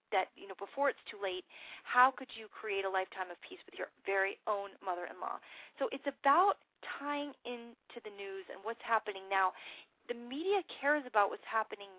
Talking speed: 190 wpm